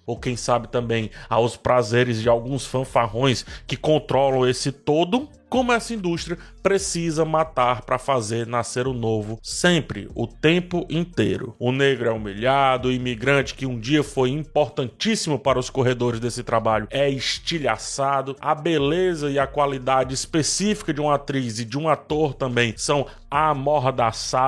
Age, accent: 20-39, Brazilian